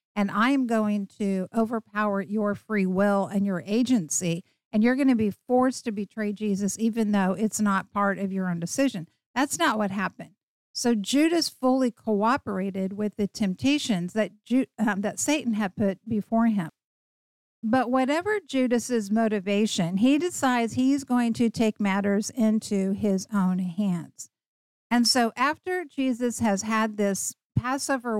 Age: 50-69